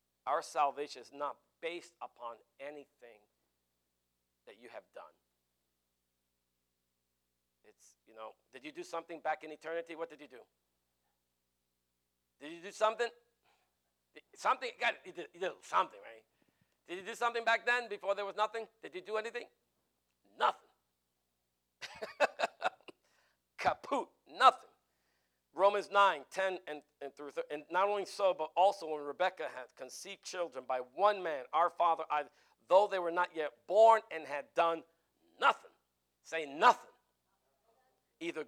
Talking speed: 140 wpm